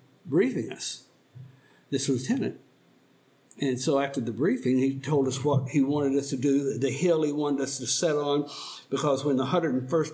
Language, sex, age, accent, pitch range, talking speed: English, male, 60-79, American, 130-155 Hz, 190 wpm